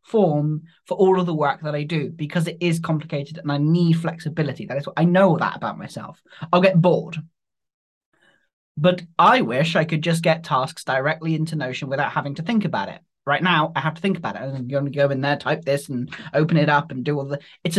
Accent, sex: British, male